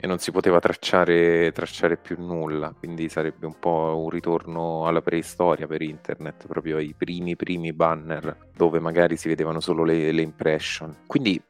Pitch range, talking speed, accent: 80-95 Hz, 165 wpm, native